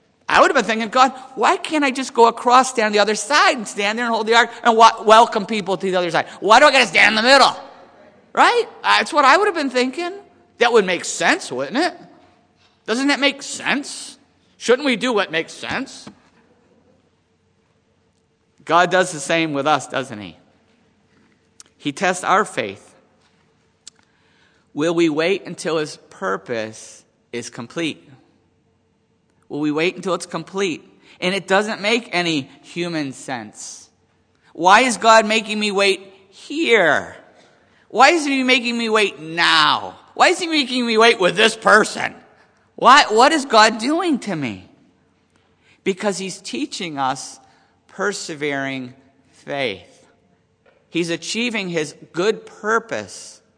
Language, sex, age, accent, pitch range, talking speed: English, male, 50-69, American, 165-235 Hz, 155 wpm